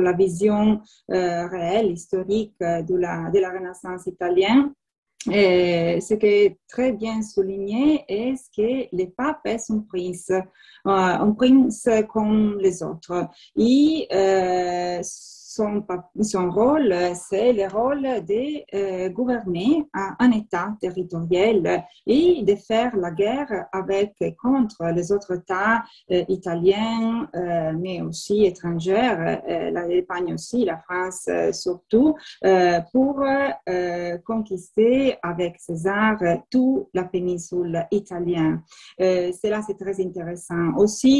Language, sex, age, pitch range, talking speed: French, female, 30-49, 180-220 Hz, 120 wpm